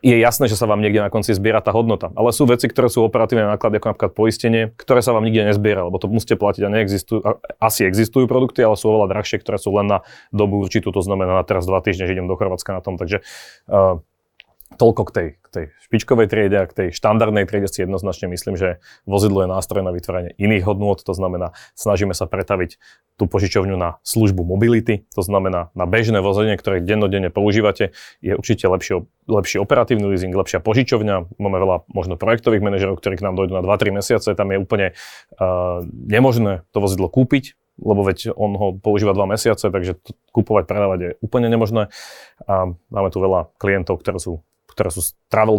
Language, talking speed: Slovak, 200 wpm